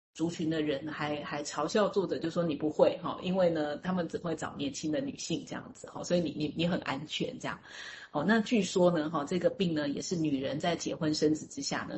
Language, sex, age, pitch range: Chinese, female, 30-49, 155-195 Hz